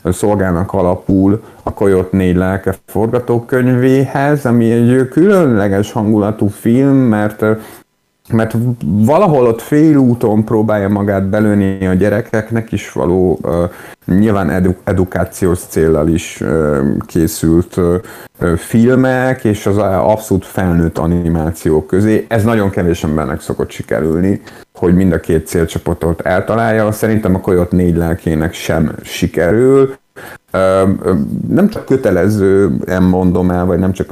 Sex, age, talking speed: male, 30-49, 115 wpm